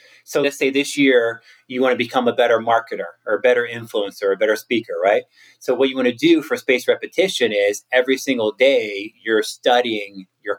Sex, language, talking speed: male, English, 210 wpm